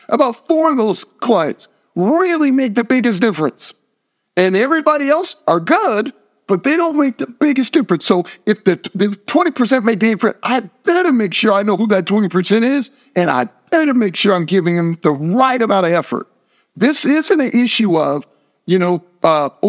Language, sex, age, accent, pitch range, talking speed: English, male, 50-69, American, 175-240 Hz, 185 wpm